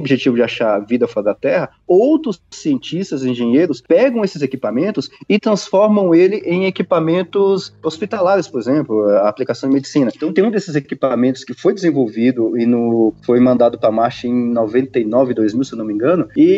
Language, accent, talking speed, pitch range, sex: Portuguese, Brazilian, 170 wpm, 130-195 Hz, male